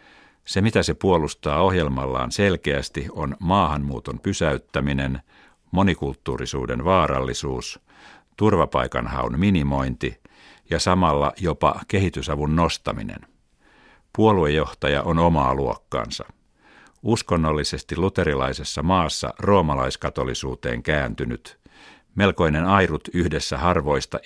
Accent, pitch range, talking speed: native, 70-90 Hz, 75 wpm